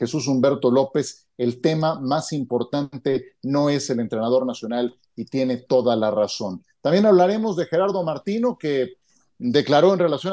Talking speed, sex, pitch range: 150 wpm, male, 135-180 Hz